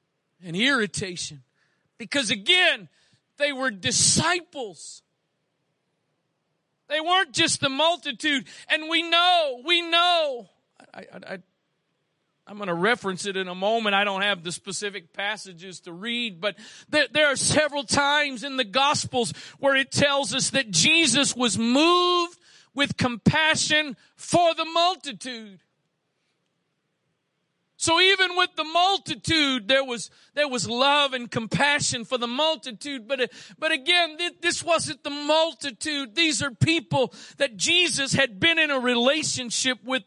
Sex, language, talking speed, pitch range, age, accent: male, English, 140 wpm, 220-310 Hz, 40-59, American